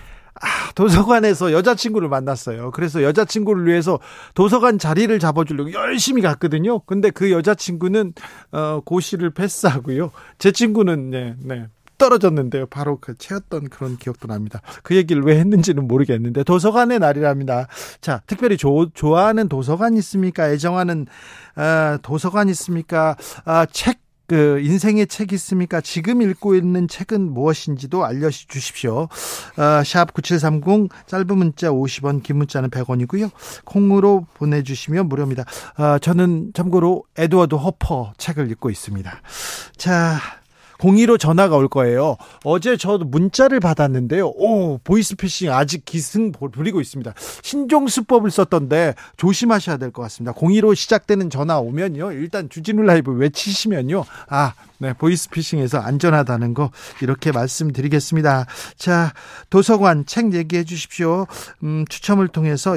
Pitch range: 140-195 Hz